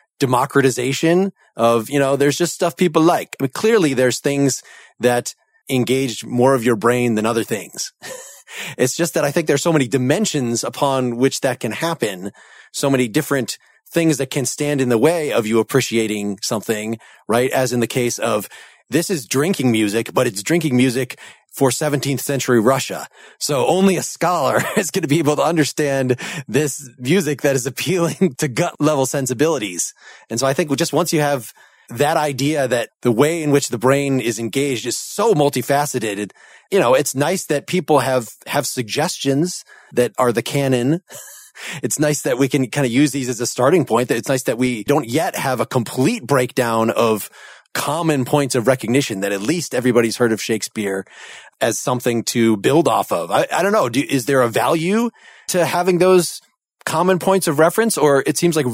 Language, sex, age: English, male, 30-49